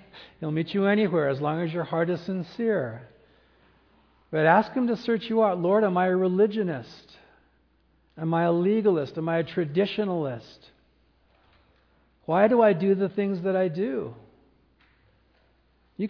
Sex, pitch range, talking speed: male, 140-185 Hz, 155 wpm